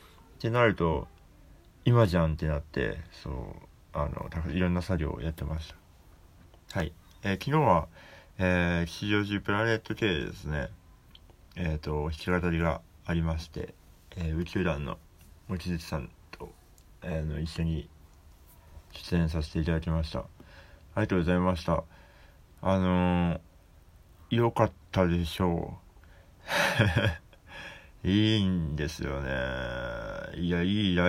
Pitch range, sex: 80-95 Hz, male